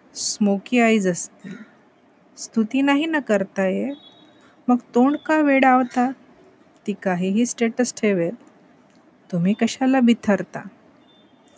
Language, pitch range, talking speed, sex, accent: Marathi, 200-250 Hz, 110 wpm, female, native